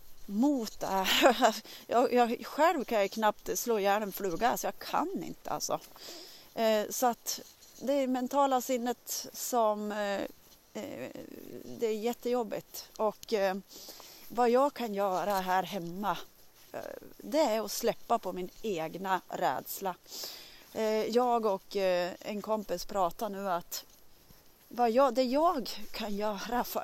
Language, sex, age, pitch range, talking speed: Swedish, female, 30-49, 195-250 Hz, 125 wpm